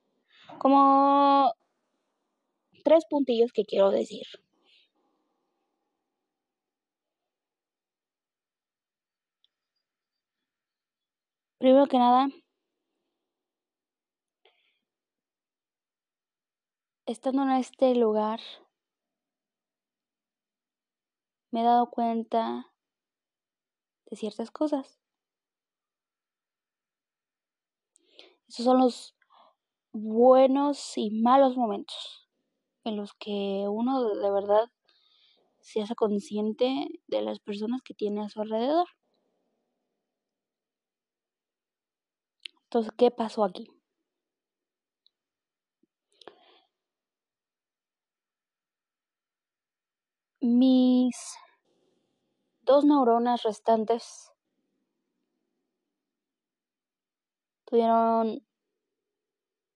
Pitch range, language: 230-345 Hz, Spanish